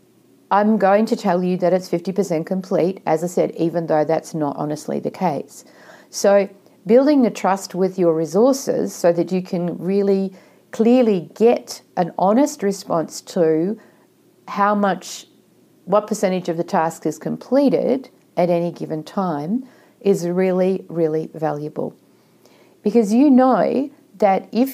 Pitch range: 170-225 Hz